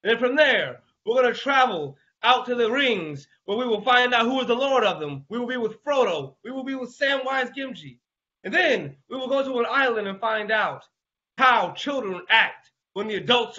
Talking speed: 220 wpm